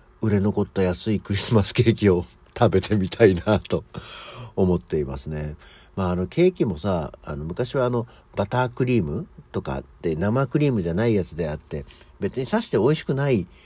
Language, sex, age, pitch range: Japanese, male, 60-79, 85-125 Hz